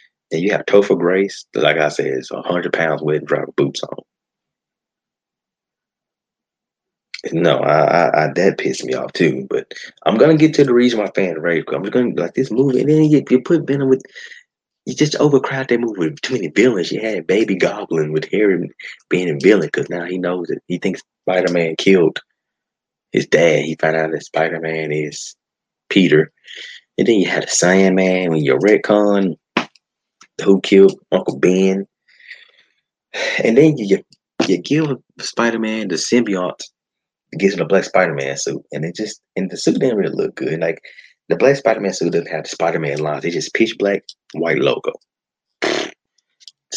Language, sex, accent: English, male, American